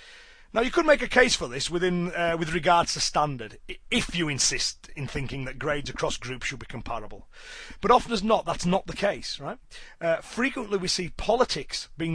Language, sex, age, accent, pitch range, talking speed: English, male, 30-49, British, 145-195 Hz, 200 wpm